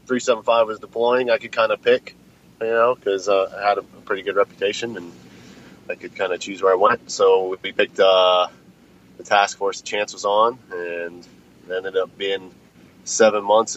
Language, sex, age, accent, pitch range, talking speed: English, male, 30-49, American, 95-115 Hz, 190 wpm